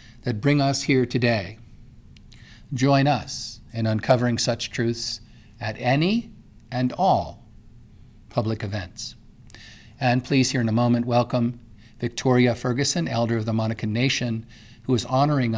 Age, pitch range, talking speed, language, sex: 50-69, 110-125 Hz, 130 wpm, English, male